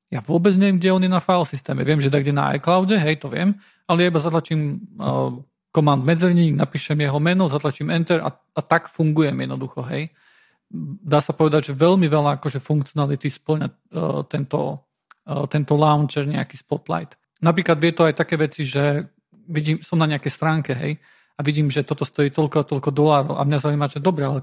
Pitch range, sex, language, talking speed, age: 145-165 Hz, male, Slovak, 195 wpm, 40-59